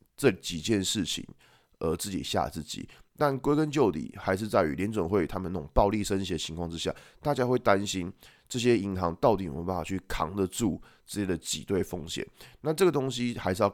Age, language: 20-39, Chinese